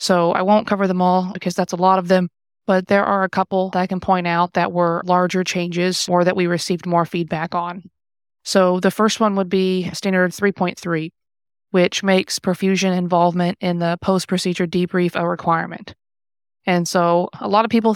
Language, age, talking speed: English, 20-39, 190 wpm